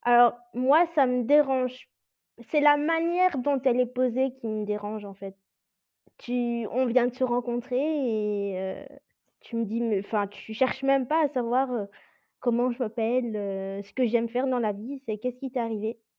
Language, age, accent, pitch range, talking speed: French, 20-39, French, 220-280 Hz, 195 wpm